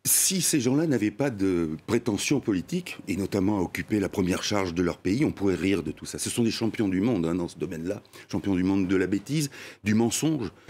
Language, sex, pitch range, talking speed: French, male, 110-160 Hz, 235 wpm